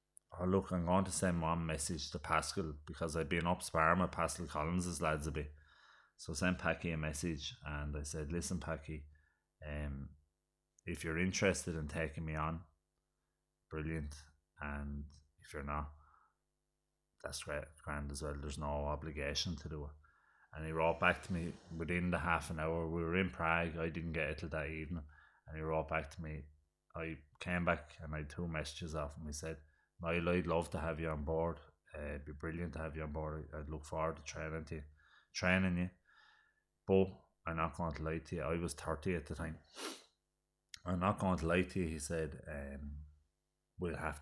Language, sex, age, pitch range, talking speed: English, male, 30-49, 75-85 Hz, 200 wpm